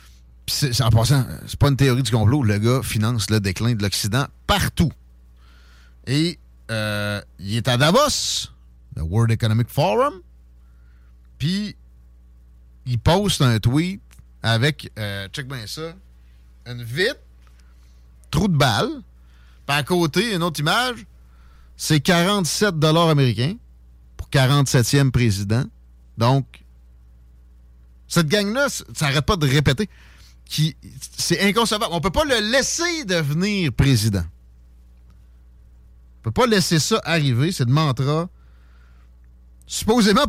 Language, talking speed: French, 120 wpm